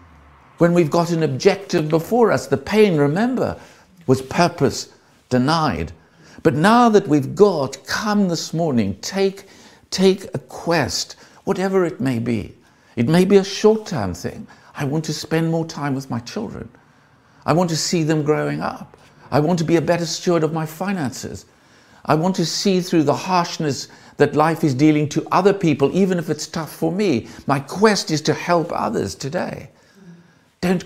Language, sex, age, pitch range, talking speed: English, male, 60-79, 140-185 Hz, 175 wpm